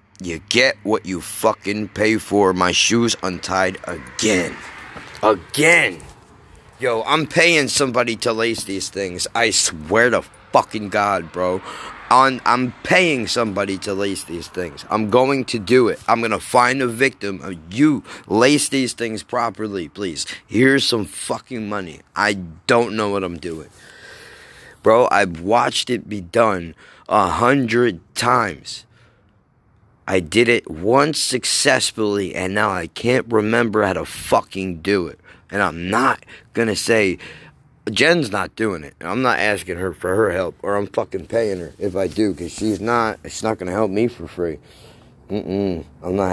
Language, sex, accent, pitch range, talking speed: English, male, American, 95-115 Hz, 160 wpm